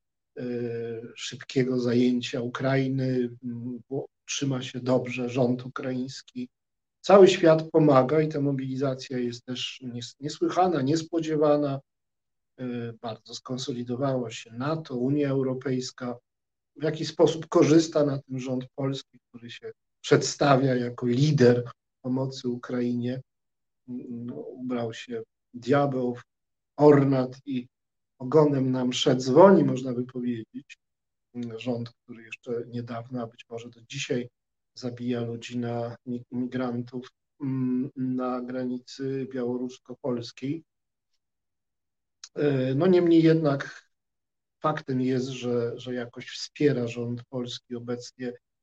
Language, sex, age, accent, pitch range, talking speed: Polish, male, 50-69, native, 120-145 Hz, 100 wpm